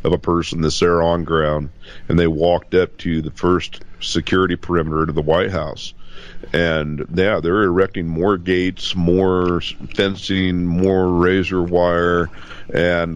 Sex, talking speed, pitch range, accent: male, 150 wpm, 85-95 Hz, American